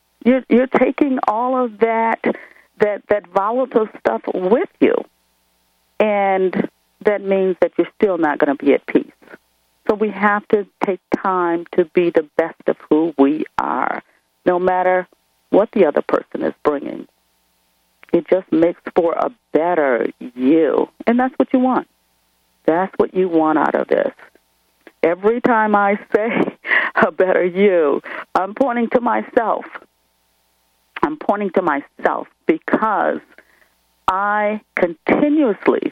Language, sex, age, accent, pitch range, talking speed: English, female, 40-59, American, 145-215 Hz, 140 wpm